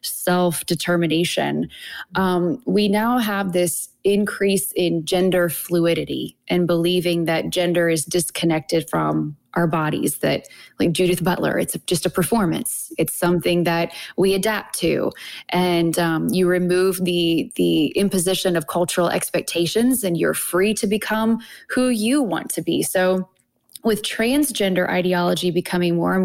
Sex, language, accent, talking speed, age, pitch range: female, English, American, 140 wpm, 20-39, 170-200 Hz